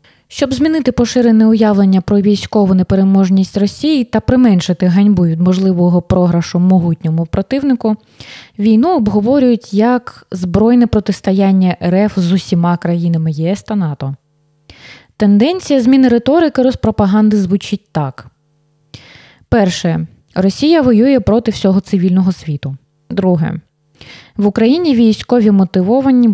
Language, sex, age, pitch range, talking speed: Ukrainian, female, 20-39, 170-225 Hz, 105 wpm